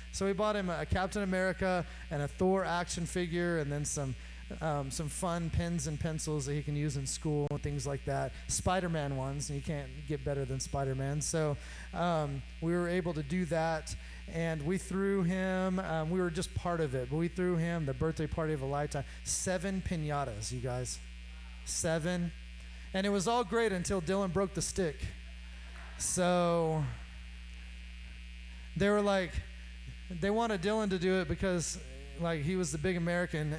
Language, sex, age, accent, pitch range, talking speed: English, male, 30-49, American, 125-185 Hz, 180 wpm